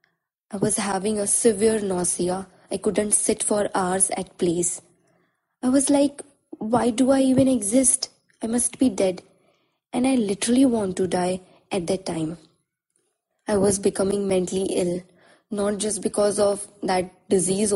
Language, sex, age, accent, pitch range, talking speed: Hindi, female, 20-39, native, 185-230 Hz, 150 wpm